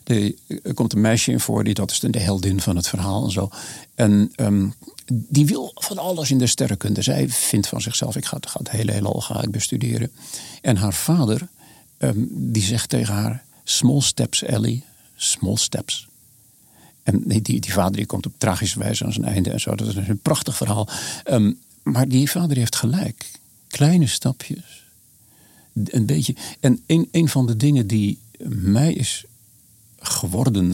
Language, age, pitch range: Dutch, 50-69, 105-130 Hz